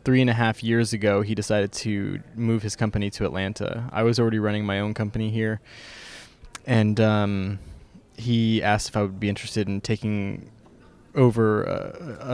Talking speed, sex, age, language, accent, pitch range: 170 wpm, male, 20-39, English, American, 105-120 Hz